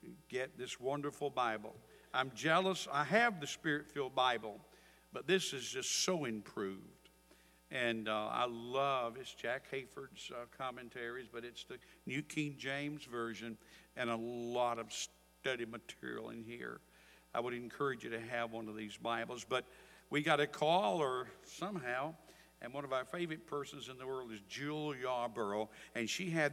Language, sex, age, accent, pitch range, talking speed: English, male, 60-79, American, 115-145 Hz, 165 wpm